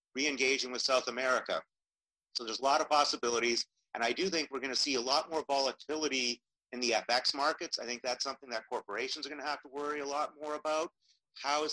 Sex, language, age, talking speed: male, English, 40-59, 225 wpm